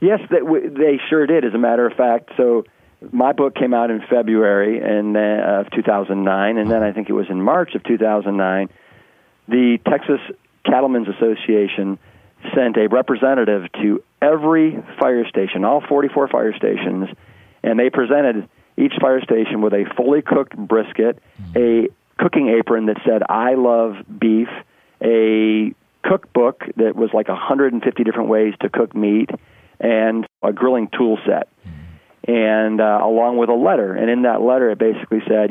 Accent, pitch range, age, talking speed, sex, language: American, 105-120 Hz, 40-59, 155 wpm, male, English